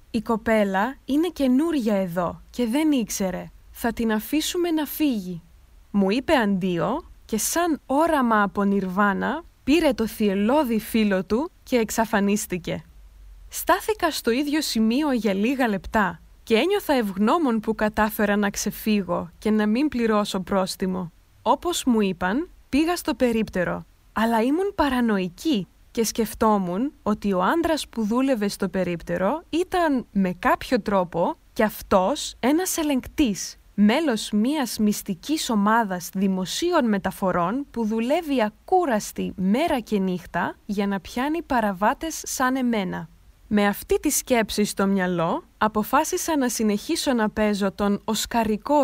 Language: Greek